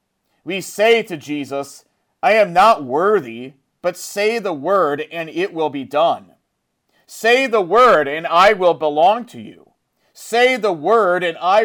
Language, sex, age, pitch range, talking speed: English, male, 40-59, 145-205 Hz, 160 wpm